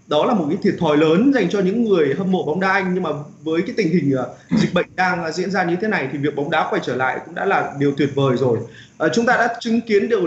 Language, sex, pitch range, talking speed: Vietnamese, male, 150-215 Hz, 290 wpm